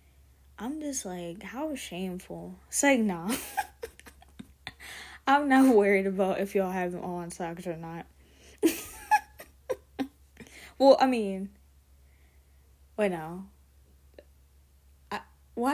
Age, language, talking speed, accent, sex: 10-29, English, 105 wpm, American, female